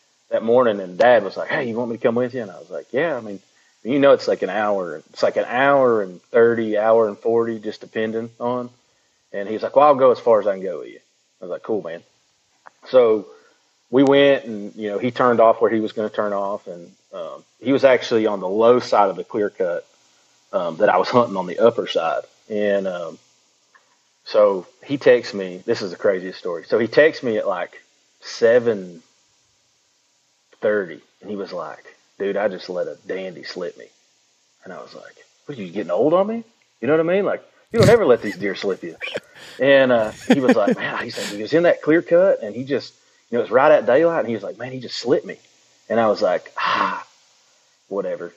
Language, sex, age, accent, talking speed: English, male, 30-49, American, 235 wpm